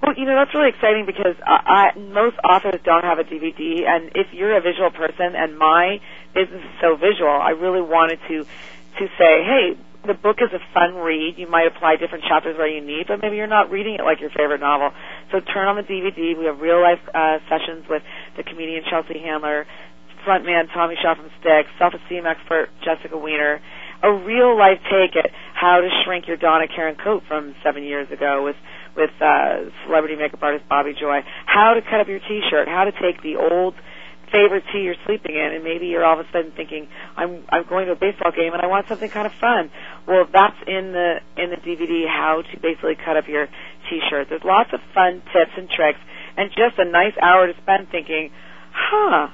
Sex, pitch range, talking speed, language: female, 160-195 Hz, 215 wpm, English